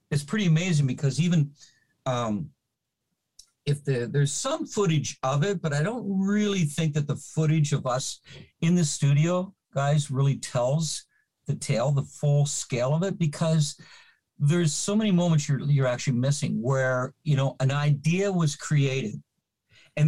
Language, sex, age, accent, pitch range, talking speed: English, male, 50-69, American, 130-155 Hz, 155 wpm